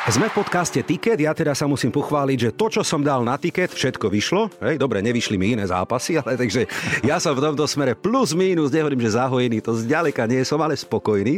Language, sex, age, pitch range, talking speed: Slovak, male, 50-69, 120-185 Hz, 220 wpm